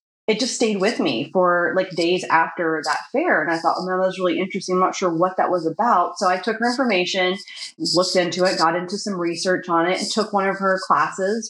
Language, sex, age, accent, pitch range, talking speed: English, female, 30-49, American, 175-205 Hz, 235 wpm